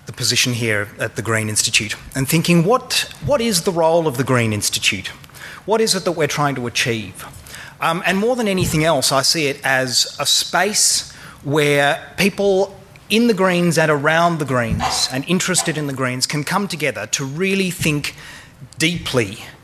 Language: English